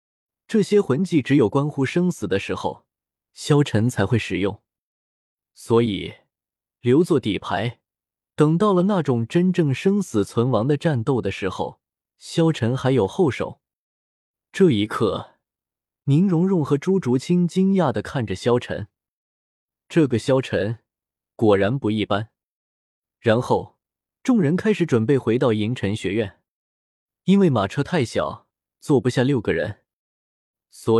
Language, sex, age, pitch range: Chinese, male, 20-39, 110-165 Hz